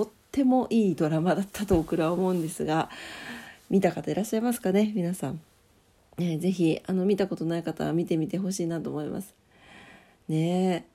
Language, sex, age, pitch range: Japanese, female, 40-59, 165-225 Hz